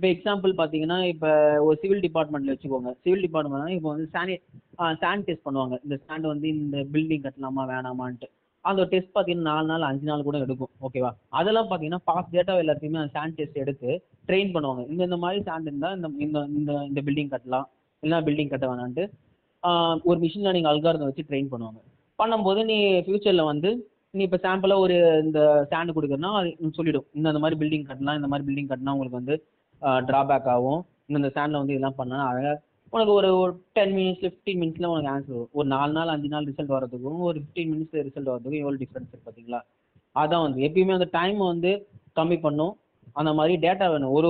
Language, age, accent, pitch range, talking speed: Tamil, 20-39, native, 140-175 Hz, 190 wpm